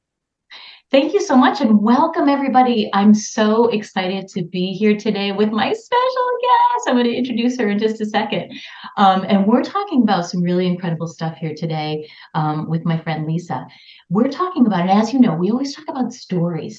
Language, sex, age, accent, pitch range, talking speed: English, female, 30-49, American, 165-240 Hz, 195 wpm